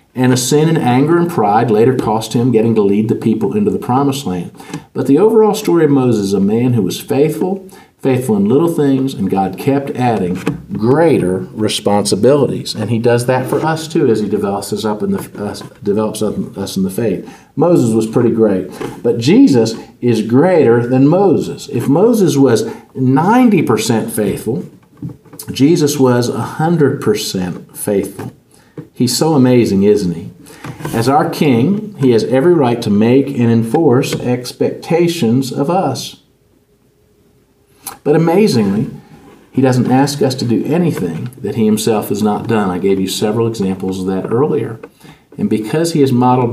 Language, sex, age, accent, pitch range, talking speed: English, male, 50-69, American, 110-145 Hz, 155 wpm